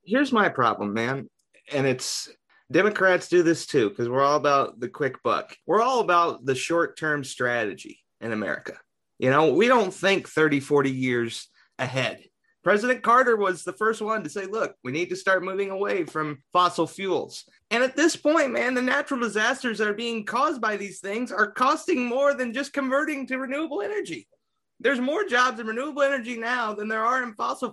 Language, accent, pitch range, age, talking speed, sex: English, American, 170-240 Hz, 30-49, 195 wpm, male